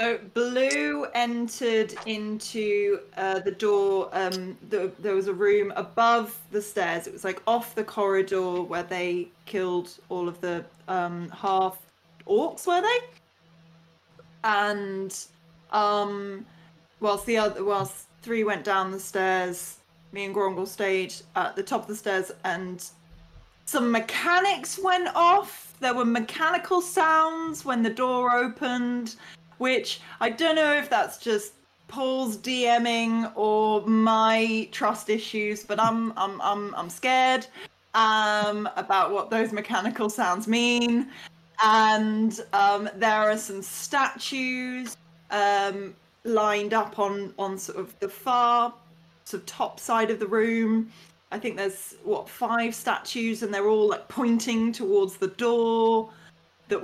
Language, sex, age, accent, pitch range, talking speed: English, female, 20-39, British, 195-240 Hz, 135 wpm